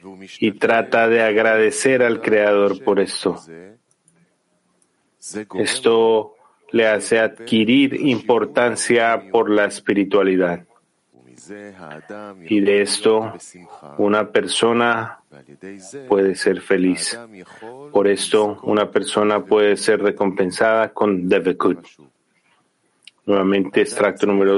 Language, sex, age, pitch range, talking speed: Spanish, male, 40-59, 100-115 Hz, 90 wpm